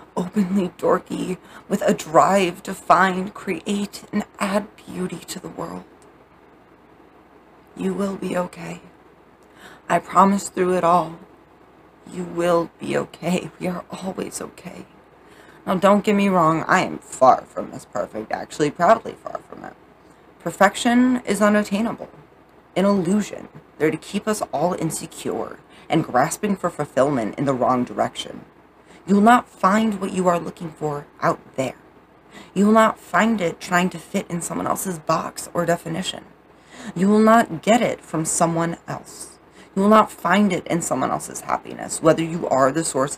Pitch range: 170-200 Hz